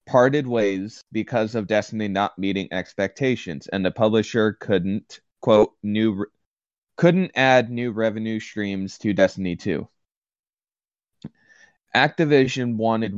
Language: English